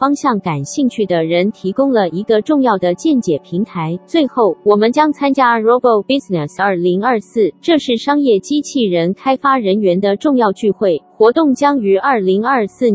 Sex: female